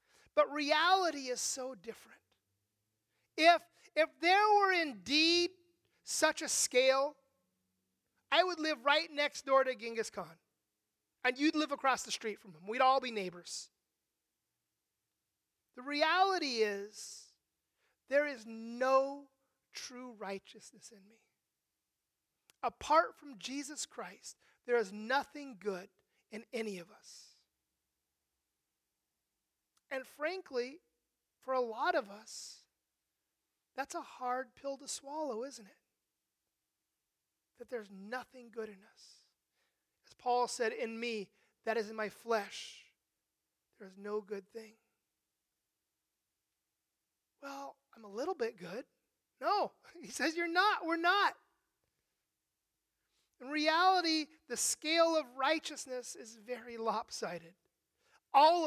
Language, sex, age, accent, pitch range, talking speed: English, male, 30-49, American, 215-300 Hz, 115 wpm